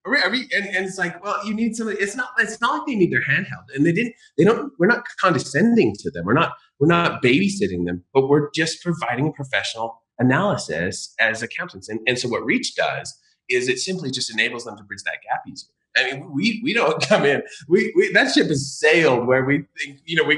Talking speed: 240 wpm